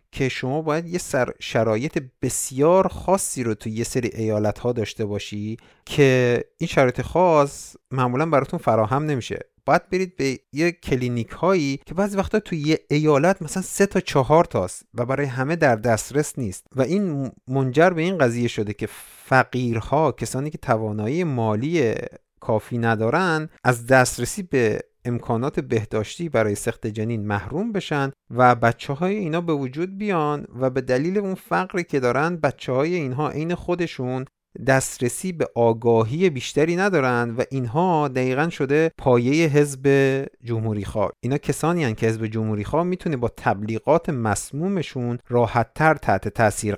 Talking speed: 150 wpm